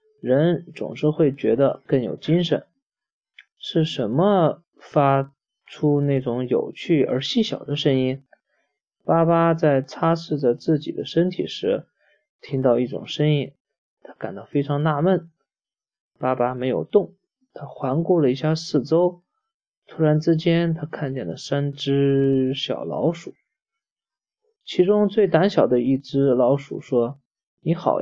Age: 20-39